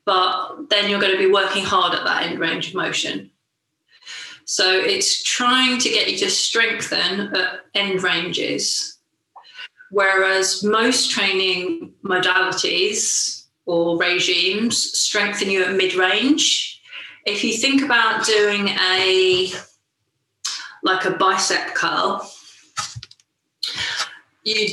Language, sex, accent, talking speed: English, female, British, 110 wpm